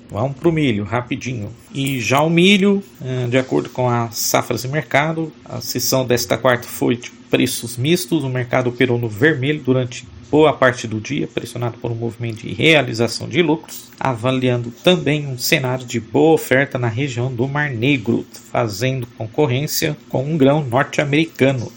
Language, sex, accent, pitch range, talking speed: Portuguese, male, Brazilian, 120-145 Hz, 165 wpm